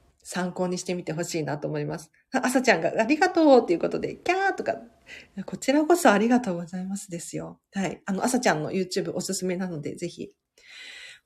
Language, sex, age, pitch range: Japanese, female, 40-59, 170-255 Hz